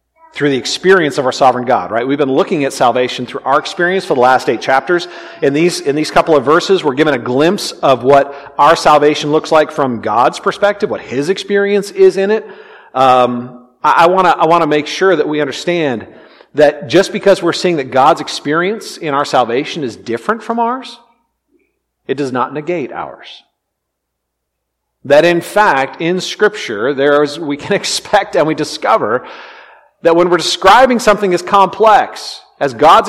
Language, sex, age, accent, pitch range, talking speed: English, male, 40-59, American, 150-210 Hz, 190 wpm